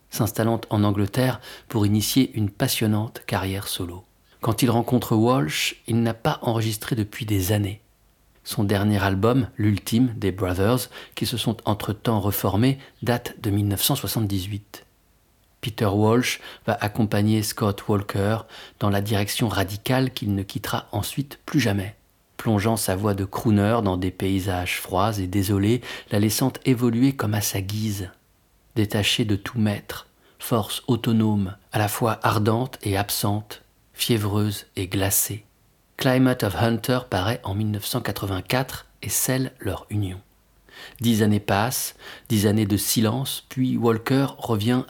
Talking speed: 140 wpm